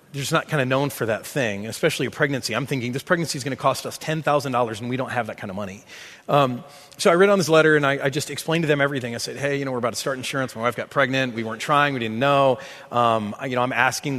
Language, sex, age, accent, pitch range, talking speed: English, male, 30-49, American, 125-150 Hz, 300 wpm